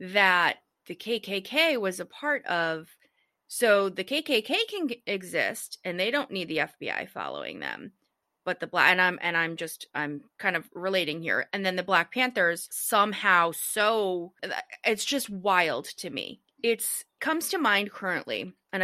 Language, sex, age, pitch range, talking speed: English, female, 30-49, 180-240 Hz, 160 wpm